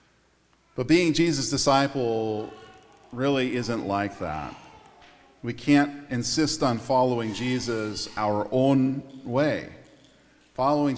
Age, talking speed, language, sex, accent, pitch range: 40-59, 100 wpm, English, male, American, 130-185 Hz